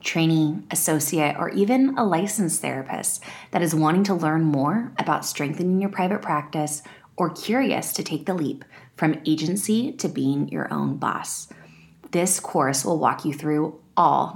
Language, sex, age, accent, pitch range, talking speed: English, female, 20-39, American, 150-190 Hz, 160 wpm